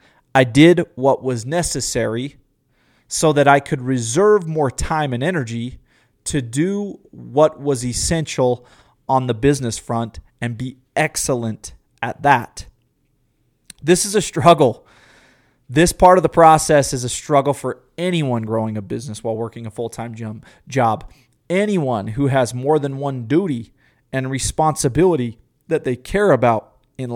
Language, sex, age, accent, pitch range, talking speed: English, male, 30-49, American, 120-160 Hz, 140 wpm